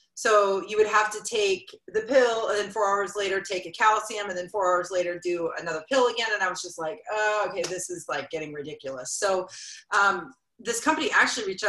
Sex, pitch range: female, 185-255 Hz